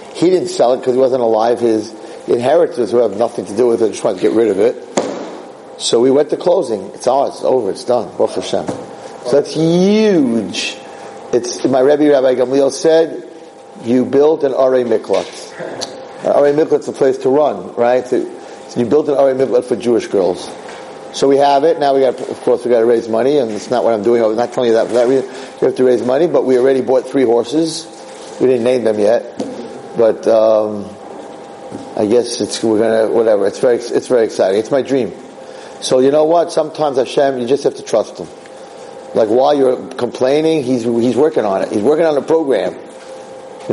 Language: English